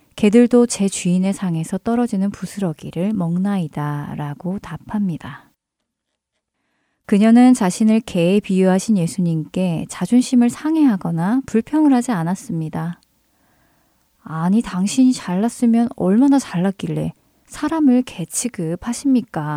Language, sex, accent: Korean, female, native